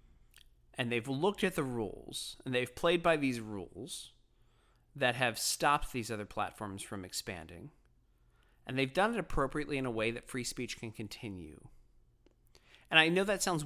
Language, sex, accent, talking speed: English, male, American, 165 wpm